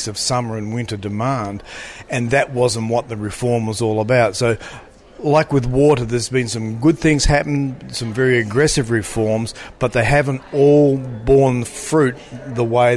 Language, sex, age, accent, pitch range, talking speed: English, male, 40-59, Australian, 115-140 Hz, 165 wpm